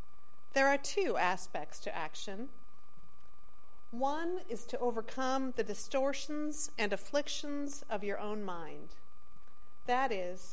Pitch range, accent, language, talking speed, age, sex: 200-270 Hz, American, English, 115 wpm, 40-59, female